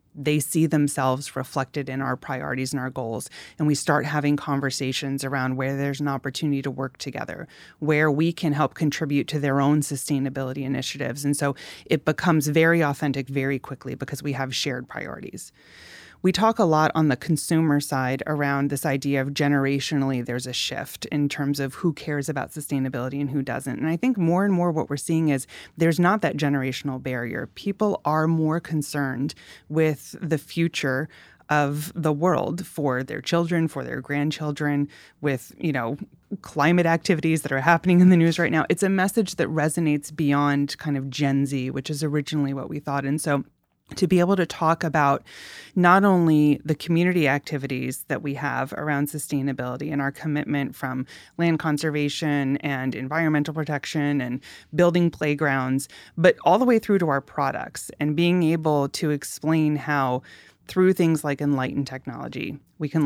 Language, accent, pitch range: English, American, 140-160 Hz